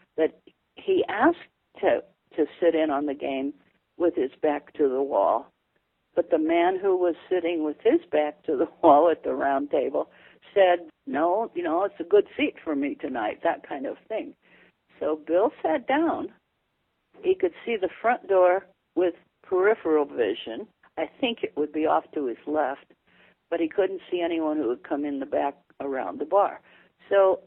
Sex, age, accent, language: female, 60-79, American, English